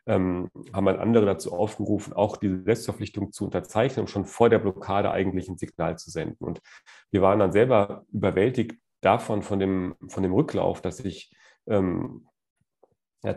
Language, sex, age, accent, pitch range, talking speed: German, male, 40-59, German, 95-110 Hz, 155 wpm